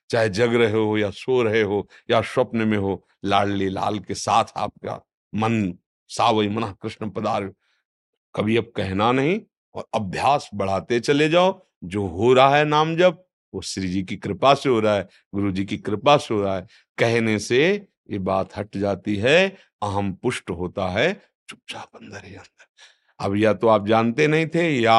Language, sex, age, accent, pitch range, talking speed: Hindi, male, 50-69, native, 105-140 Hz, 185 wpm